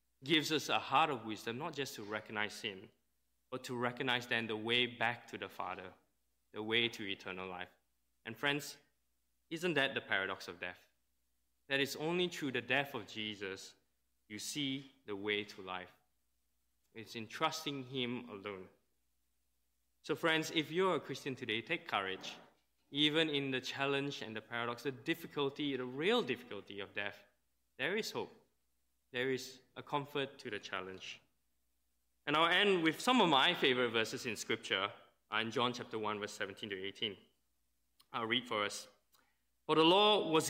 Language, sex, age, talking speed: English, male, 20-39, 165 wpm